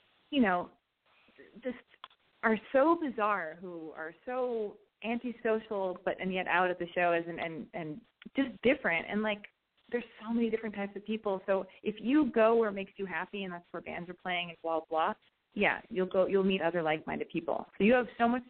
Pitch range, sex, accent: 180-230 Hz, female, American